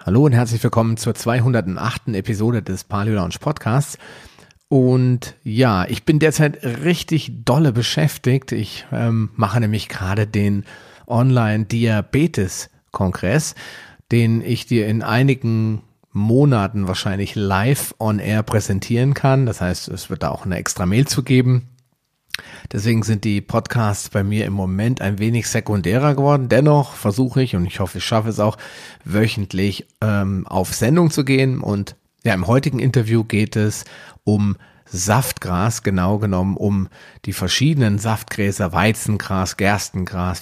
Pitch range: 100-125 Hz